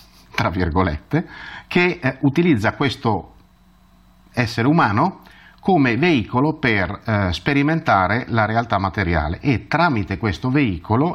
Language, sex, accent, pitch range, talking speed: Italian, male, native, 90-125 Hz, 110 wpm